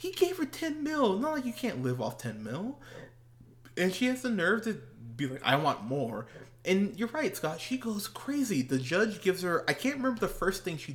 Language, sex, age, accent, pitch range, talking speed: English, male, 20-39, American, 125-170 Hz, 230 wpm